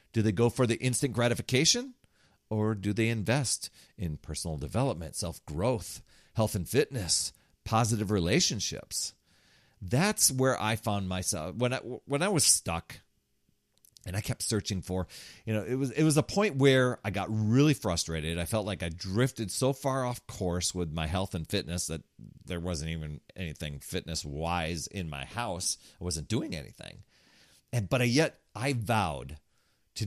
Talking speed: 170 wpm